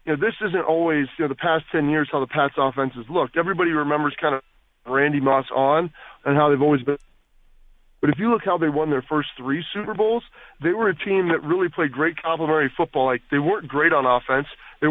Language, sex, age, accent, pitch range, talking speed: English, male, 30-49, American, 140-165 Hz, 235 wpm